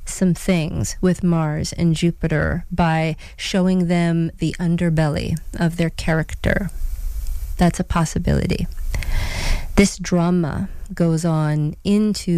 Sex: female